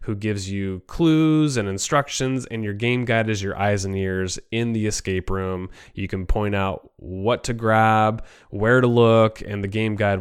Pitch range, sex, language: 95-110 Hz, male, English